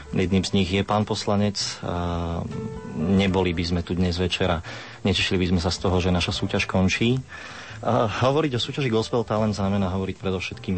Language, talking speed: Slovak, 165 wpm